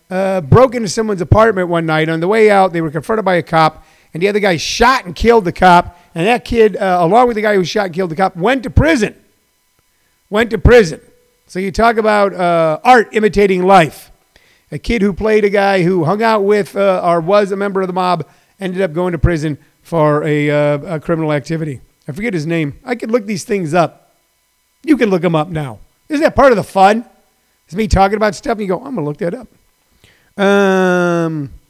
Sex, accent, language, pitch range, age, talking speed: male, American, English, 165-215 Hz, 50-69, 225 wpm